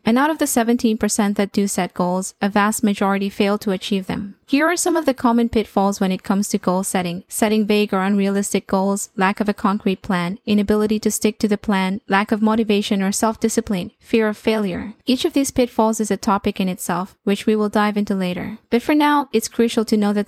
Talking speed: 225 wpm